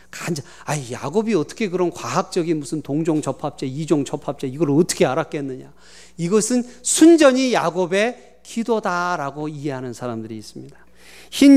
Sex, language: male, Korean